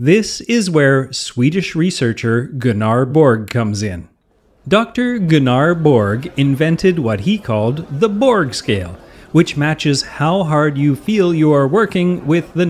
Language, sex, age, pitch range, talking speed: English, male, 30-49, 115-155 Hz, 140 wpm